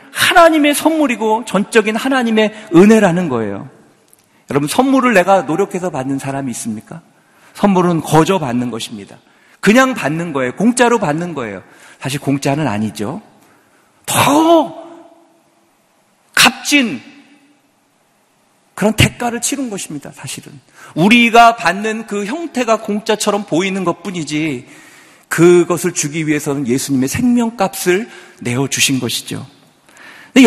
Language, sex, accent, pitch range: Korean, male, native, 155-250 Hz